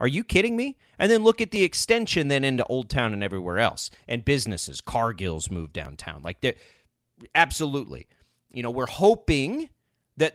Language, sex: English, male